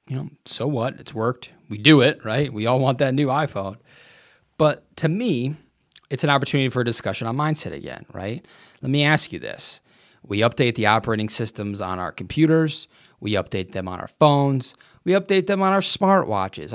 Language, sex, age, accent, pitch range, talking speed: English, male, 30-49, American, 110-145 Hz, 195 wpm